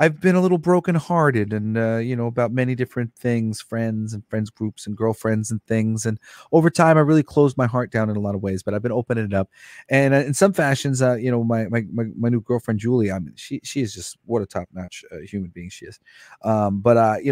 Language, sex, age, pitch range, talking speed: English, male, 30-49, 105-130 Hz, 245 wpm